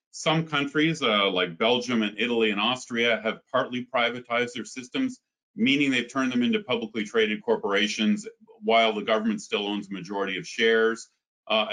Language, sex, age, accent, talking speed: English, male, 40-59, American, 165 wpm